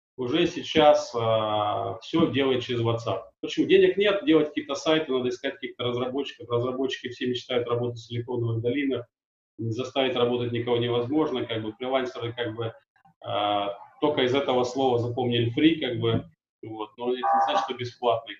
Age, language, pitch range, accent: 30-49, Russian, 120-155 Hz, native